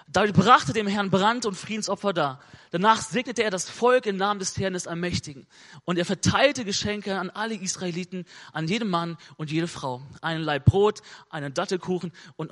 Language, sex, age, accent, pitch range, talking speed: German, male, 30-49, German, 165-230 Hz, 180 wpm